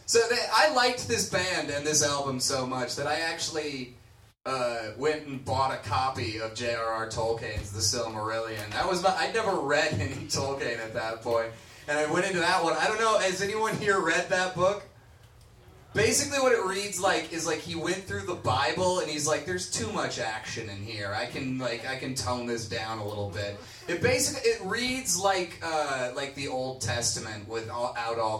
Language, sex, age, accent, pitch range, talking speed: English, male, 30-49, American, 110-150 Hz, 200 wpm